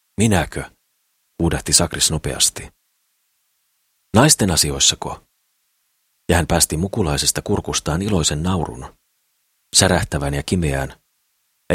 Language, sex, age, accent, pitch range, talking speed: Finnish, male, 40-59, native, 75-90 Hz, 85 wpm